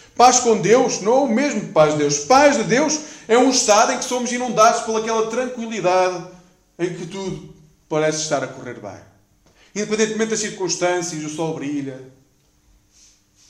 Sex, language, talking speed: male, Portuguese, 155 wpm